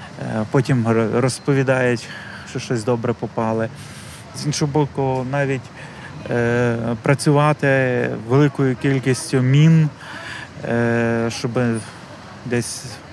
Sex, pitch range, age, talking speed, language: male, 115-140 Hz, 30-49, 75 wpm, Ukrainian